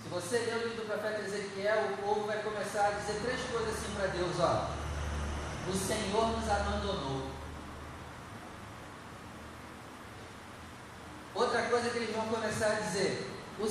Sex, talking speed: male, 145 wpm